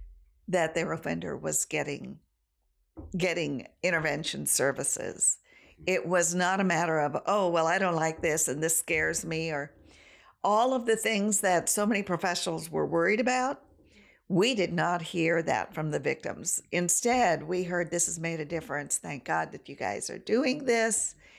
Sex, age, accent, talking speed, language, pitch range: female, 50-69, American, 170 wpm, English, 160-195 Hz